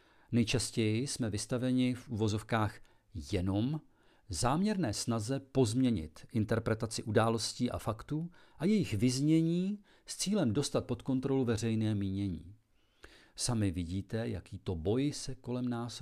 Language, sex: Czech, male